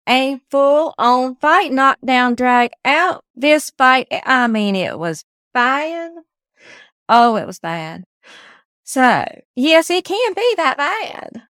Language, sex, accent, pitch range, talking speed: English, female, American, 210-275 Hz, 130 wpm